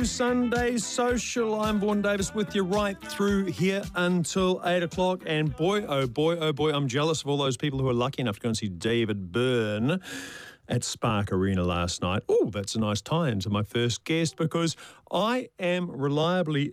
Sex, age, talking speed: male, 40-59, 190 wpm